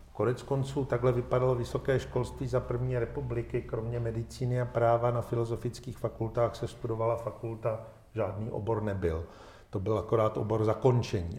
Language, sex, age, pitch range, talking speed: Czech, male, 50-69, 115-130 Hz, 140 wpm